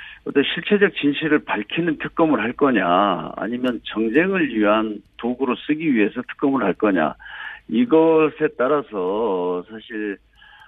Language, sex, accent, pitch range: Korean, male, native, 105-155 Hz